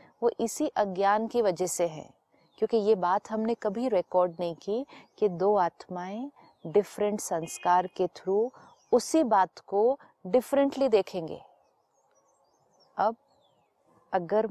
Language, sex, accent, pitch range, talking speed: Hindi, female, native, 190-240 Hz, 120 wpm